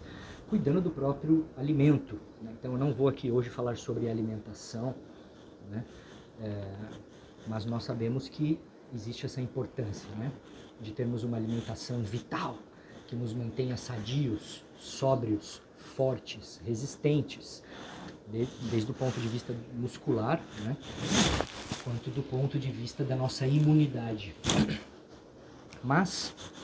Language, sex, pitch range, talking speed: Portuguese, male, 115-140 Hz, 120 wpm